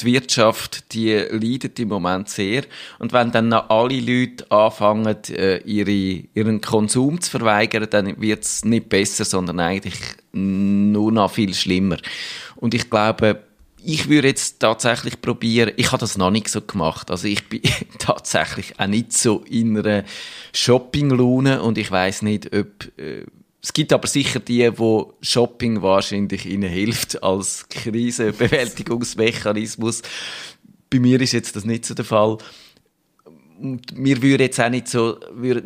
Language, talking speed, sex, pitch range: German, 150 wpm, male, 105-125 Hz